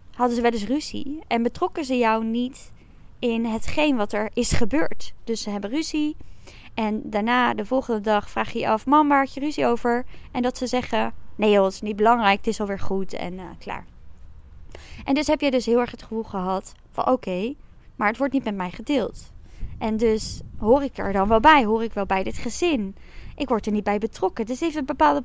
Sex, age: female, 20-39